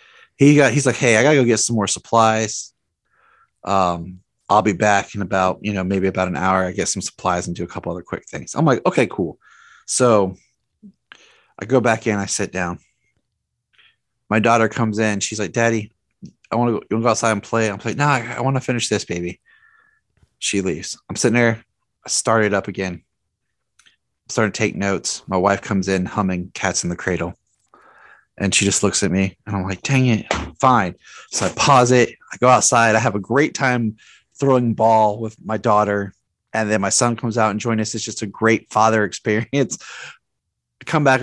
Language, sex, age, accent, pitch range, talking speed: English, male, 30-49, American, 100-120 Hz, 205 wpm